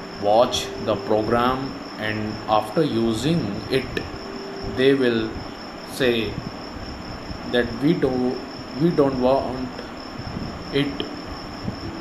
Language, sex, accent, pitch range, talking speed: English, male, Indian, 110-130 Hz, 85 wpm